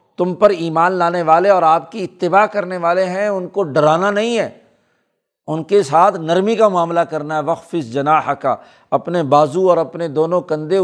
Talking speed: 185 wpm